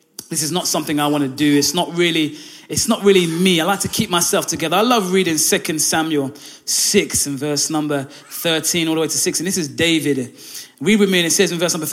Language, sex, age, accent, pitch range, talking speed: English, male, 20-39, British, 165-215 Hz, 240 wpm